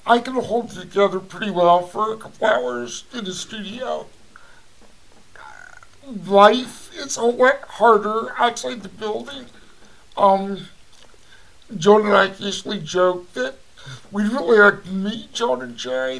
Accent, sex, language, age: American, male, English, 60-79